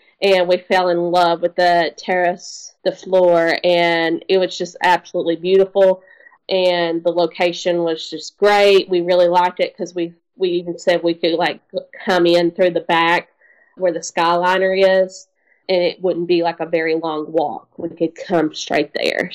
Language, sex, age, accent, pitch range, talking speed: English, female, 20-39, American, 170-190 Hz, 175 wpm